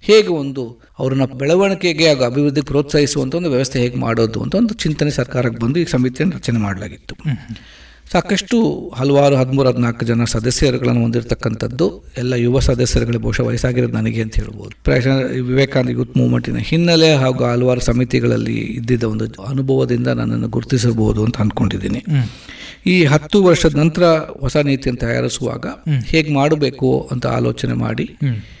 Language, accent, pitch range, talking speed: Kannada, native, 120-155 Hz, 130 wpm